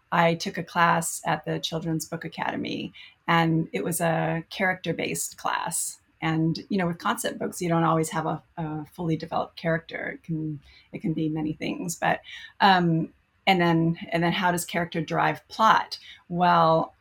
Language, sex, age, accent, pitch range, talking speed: English, female, 30-49, American, 160-175 Hz, 175 wpm